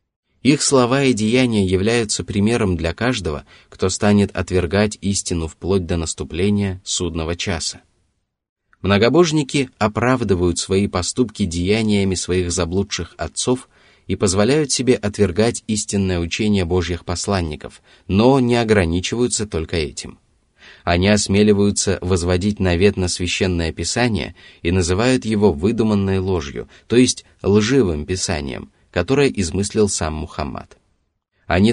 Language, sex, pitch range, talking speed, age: Russian, male, 90-110 Hz, 110 wpm, 30-49